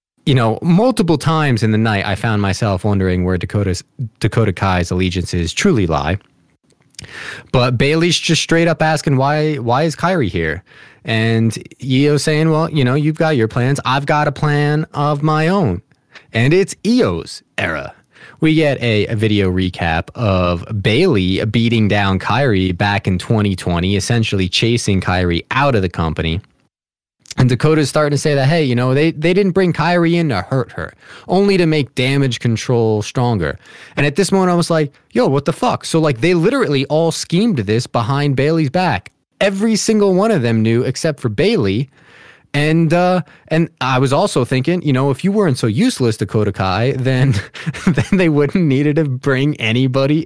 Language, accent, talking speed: English, American, 175 wpm